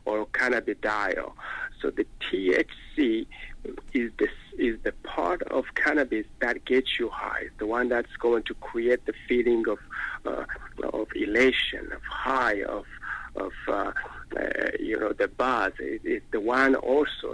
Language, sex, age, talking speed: English, male, 50-69, 150 wpm